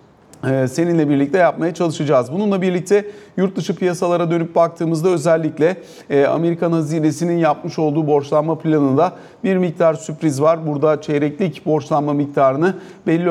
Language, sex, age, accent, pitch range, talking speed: Turkish, male, 40-59, native, 140-175 Hz, 125 wpm